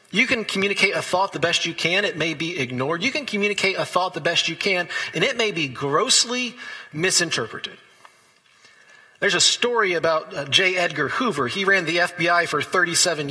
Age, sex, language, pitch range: 40-59, male, English, 165-210 Hz